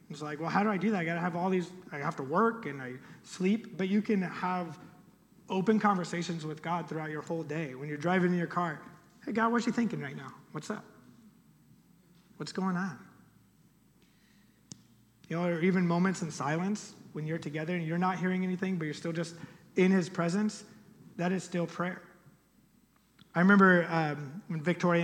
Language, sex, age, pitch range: English, male, 30-49, 155-190 Hz